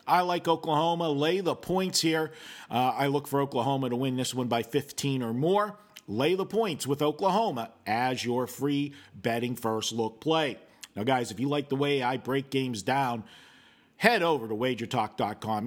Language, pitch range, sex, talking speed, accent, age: English, 120-155 Hz, male, 180 wpm, American, 50-69